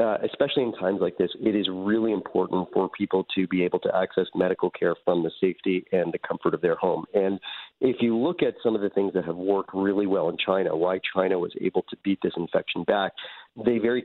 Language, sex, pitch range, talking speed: English, male, 95-115 Hz, 235 wpm